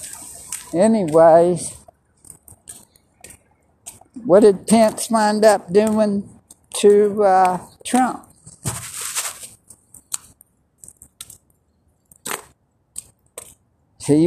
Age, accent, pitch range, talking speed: 60-79, American, 165-210 Hz, 45 wpm